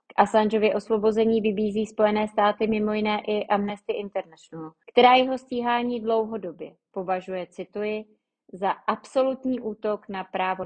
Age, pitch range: 30-49, 185-225 Hz